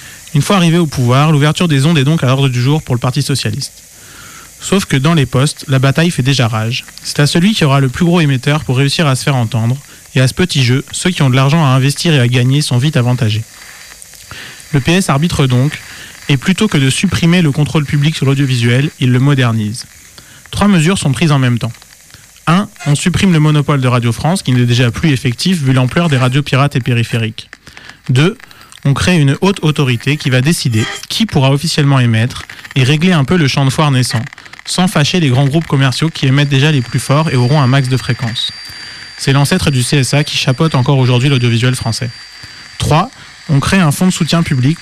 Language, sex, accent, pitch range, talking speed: French, male, French, 125-155 Hz, 220 wpm